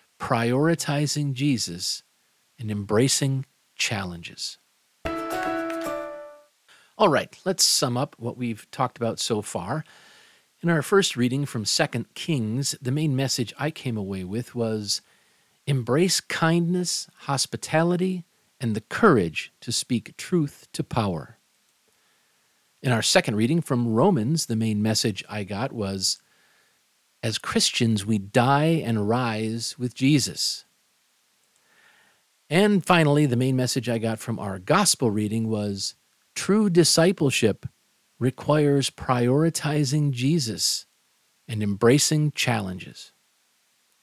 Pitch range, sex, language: 110-150 Hz, male, English